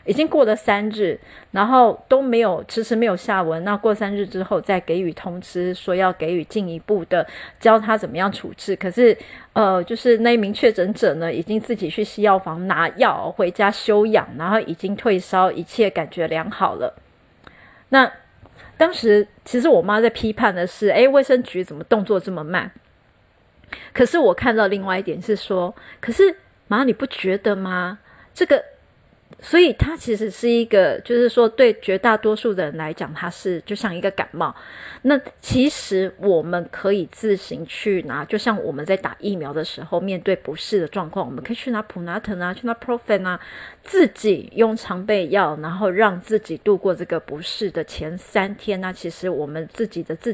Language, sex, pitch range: Chinese, female, 180-225 Hz